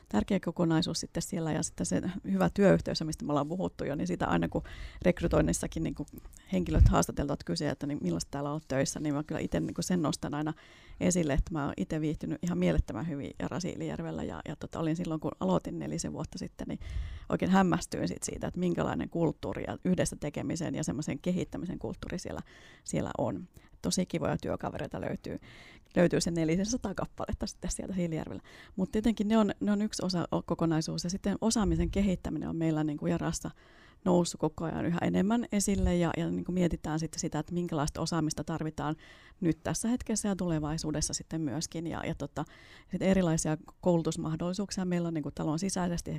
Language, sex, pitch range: Finnish, female, 155-180 Hz